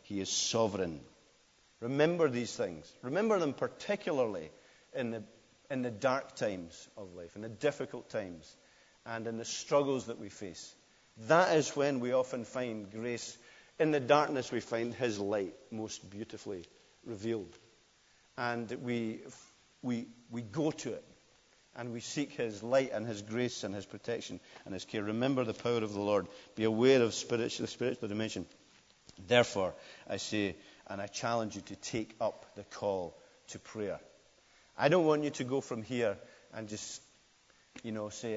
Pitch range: 105-125 Hz